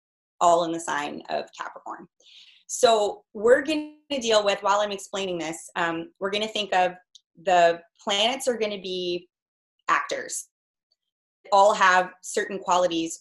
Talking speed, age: 155 wpm, 30-49